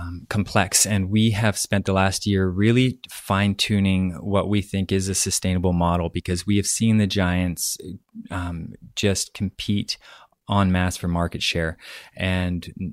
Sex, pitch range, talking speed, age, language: male, 85-100 Hz, 155 wpm, 20-39, English